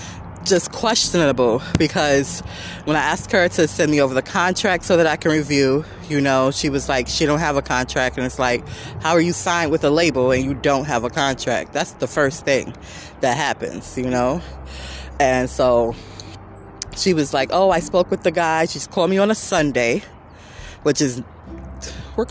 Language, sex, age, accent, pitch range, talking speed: English, female, 20-39, American, 115-170 Hz, 195 wpm